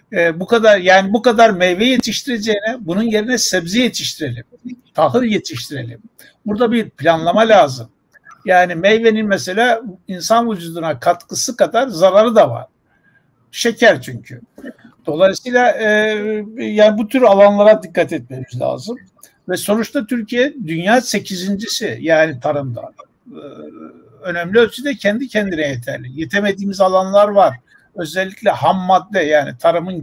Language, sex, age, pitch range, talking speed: Turkish, male, 60-79, 165-230 Hz, 120 wpm